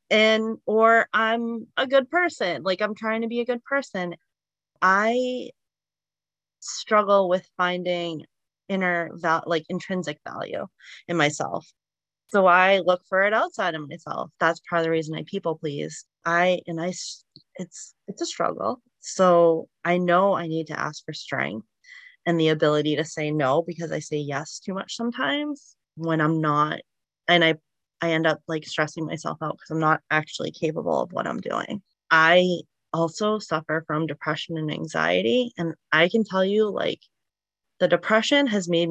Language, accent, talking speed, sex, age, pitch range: English, American, 165 wpm, female, 30-49, 155-195 Hz